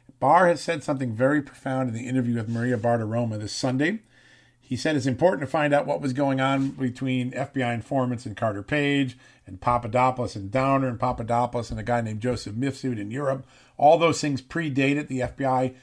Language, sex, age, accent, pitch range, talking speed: English, male, 50-69, American, 120-135 Hz, 195 wpm